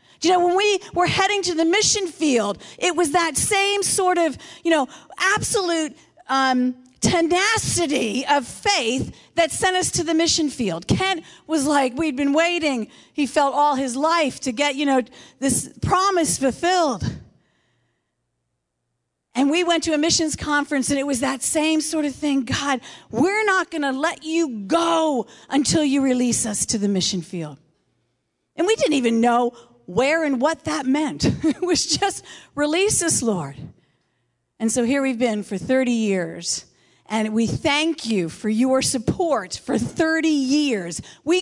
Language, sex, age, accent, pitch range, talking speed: English, female, 40-59, American, 225-325 Hz, 165 wpm